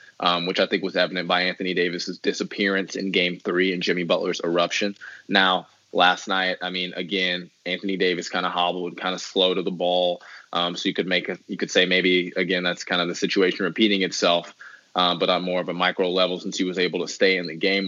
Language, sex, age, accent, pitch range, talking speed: English, male, 20-39, American, 90-115 Hz, 230 wpm